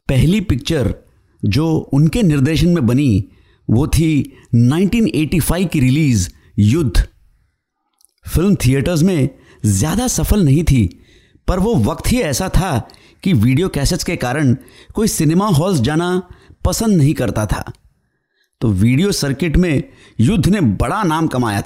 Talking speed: 135 wpm